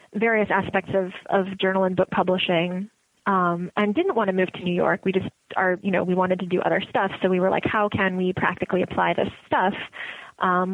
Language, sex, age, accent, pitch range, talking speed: English, female, 20-39, American, 180-200 Hz, 225 wpm